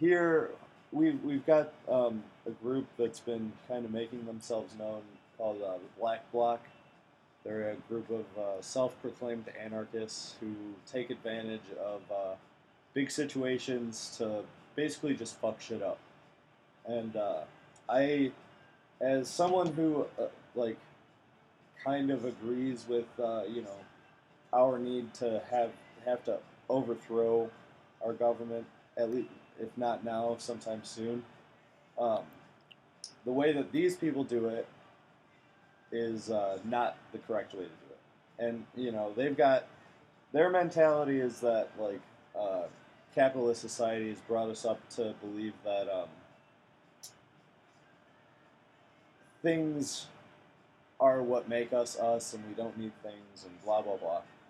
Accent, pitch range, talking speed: American, 110-130 Hz, 135 wpm